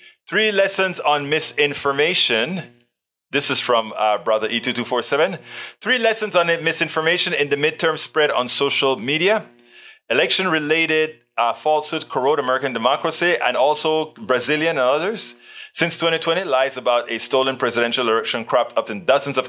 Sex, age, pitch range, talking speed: male, 30-49, 120-165 Hz, 135 wpm